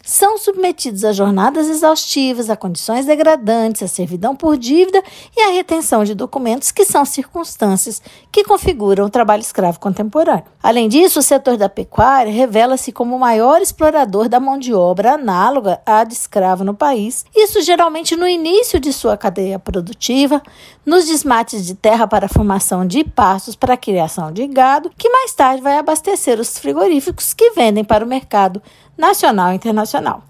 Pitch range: 215-335 Hz